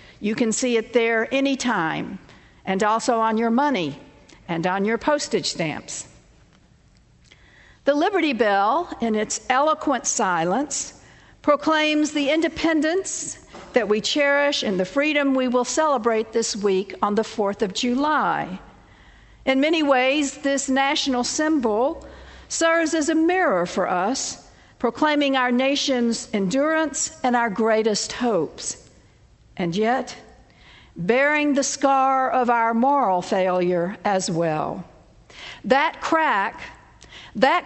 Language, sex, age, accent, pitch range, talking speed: English, female, 60-79, American, 210-285 Hz, 120 wpm